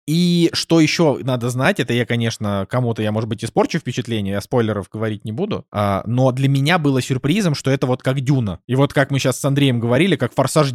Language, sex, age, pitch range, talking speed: Russian, male, 20-39, 115-145 Hz, 225 wpm